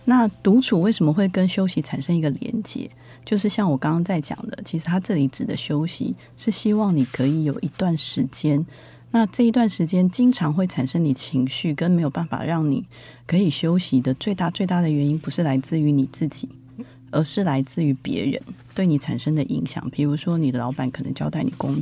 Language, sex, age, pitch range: Chinese, female, 30-49, 135-180 Hz